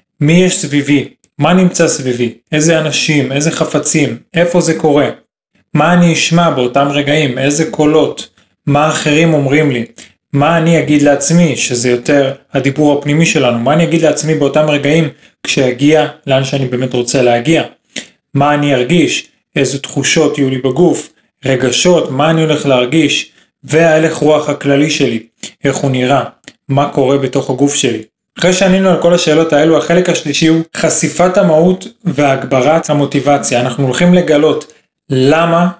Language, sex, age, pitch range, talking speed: Hebrew, male, 30-49, 140-165 Hz, 145 wpm